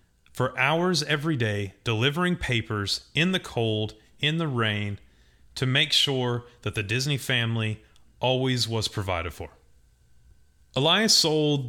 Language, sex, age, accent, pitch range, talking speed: English, male, 30-49, American, 105-140 Hz, 130 wpm